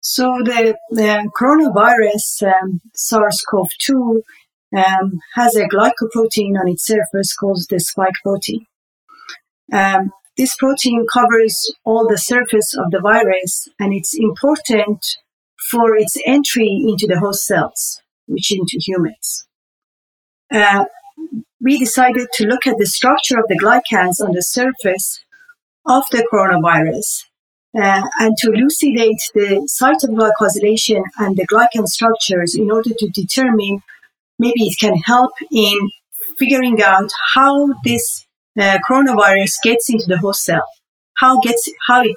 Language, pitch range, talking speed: English, 200-250 Hz, 130 wpm